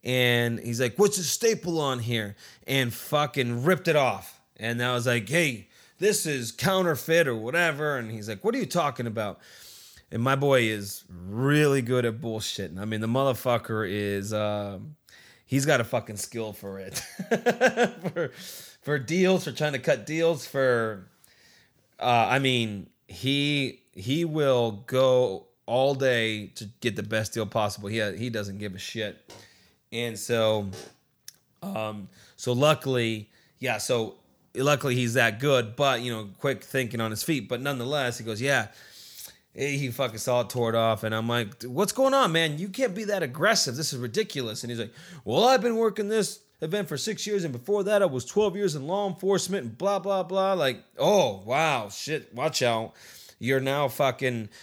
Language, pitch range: English, 110-155 Hz